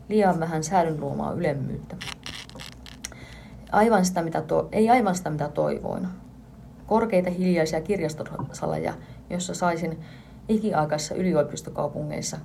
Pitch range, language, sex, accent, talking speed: 155-195 Hz, Finnish, female, native, 85 wpm